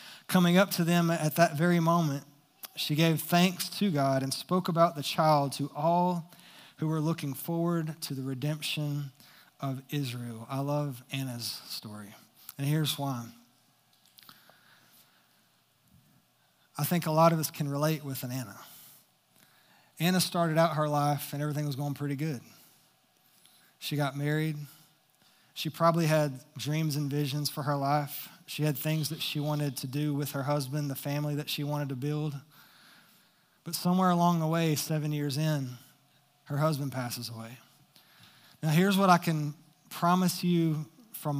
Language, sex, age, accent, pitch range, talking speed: English, male, 20-39, American, 140-165 Hz, 155 wpm